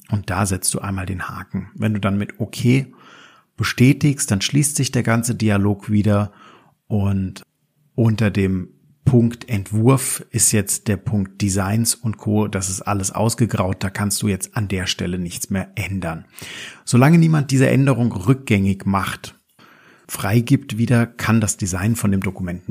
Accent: German